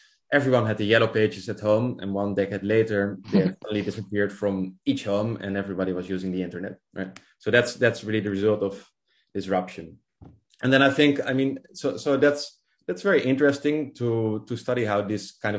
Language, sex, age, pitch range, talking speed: English, male, 20-39, 100-130 Hz, 195 wpm